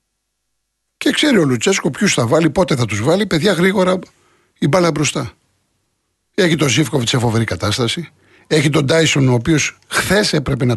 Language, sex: Greek, male